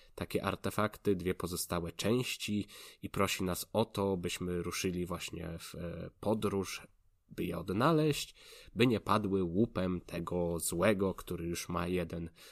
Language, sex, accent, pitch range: Polish, male, native, 90-110 Hz